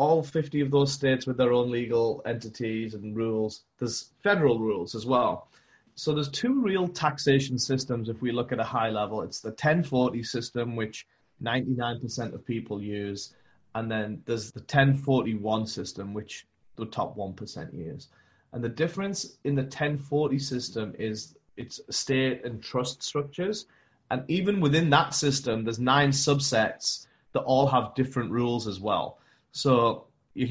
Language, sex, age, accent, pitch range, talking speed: English, male, 30-49, British, 110-140 Hz, 155 wpm